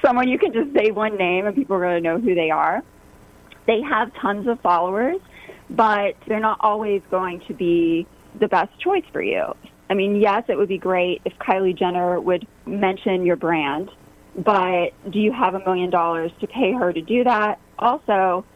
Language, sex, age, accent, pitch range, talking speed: English, female, 30-49, American, 180-215 Hz, 195 wpm